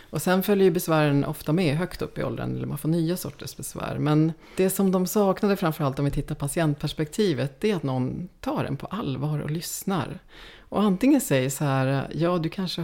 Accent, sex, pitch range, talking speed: Swedish, female, 135-175 Hz, 210 wpm